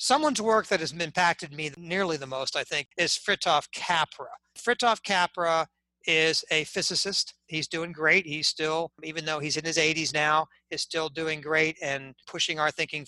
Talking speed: 180 wpm